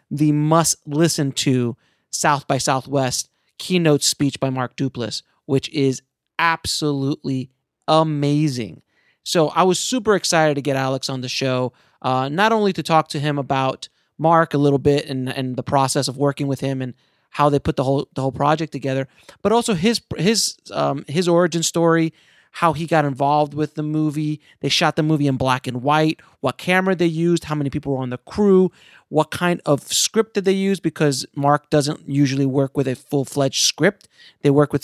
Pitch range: 140-165 Hz